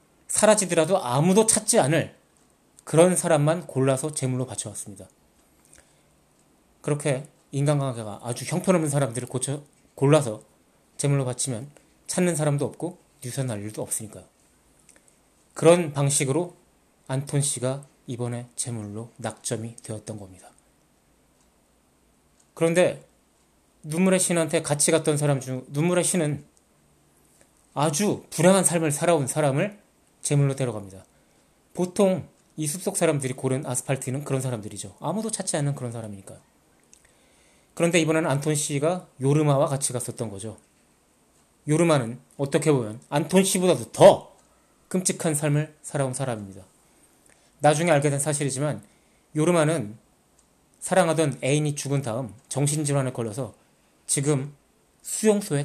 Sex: male